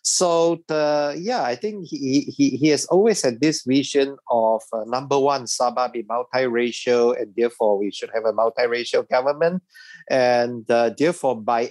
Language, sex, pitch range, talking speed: English, male, 110-135 Hz, 165 wpm